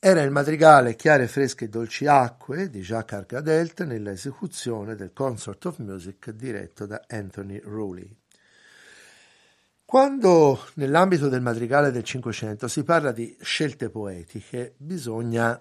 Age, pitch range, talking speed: 60-79, 105-140 Hz, 125 wpm